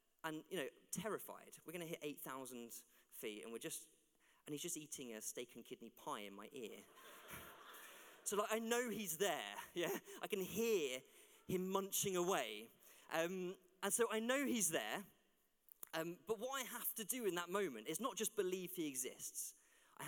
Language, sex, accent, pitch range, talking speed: English, male, British, 150-205 Hz, 185 wpm